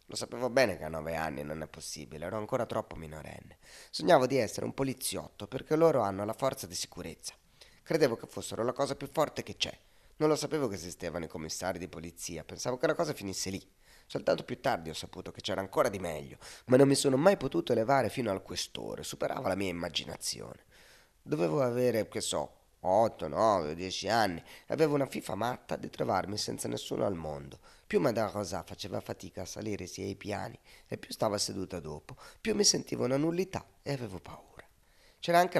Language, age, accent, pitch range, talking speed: Italian, 30-49, native, 90-125 Hz, 200 wpm